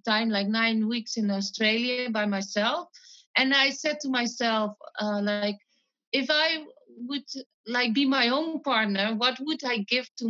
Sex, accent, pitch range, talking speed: female, Dutch, 210-275 Hz, 165 wpm